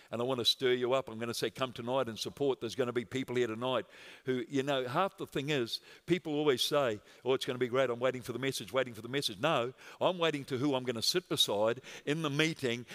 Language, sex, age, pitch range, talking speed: English, male, 50-69, 130-170 Hz, 280 wpm